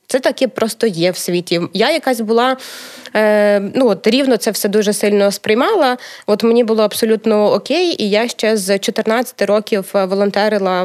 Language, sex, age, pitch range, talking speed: Ukrainian, female, 20-39, 195-225 Hz, 160 wpm